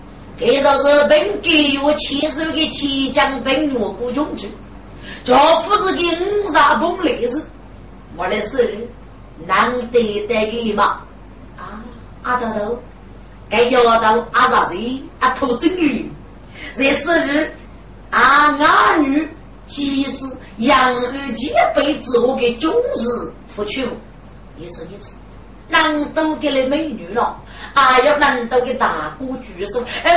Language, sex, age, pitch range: Chinese, female, 30-49, 240-315 Hz